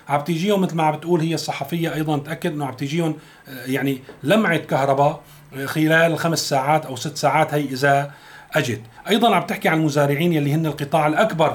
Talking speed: 160 wpm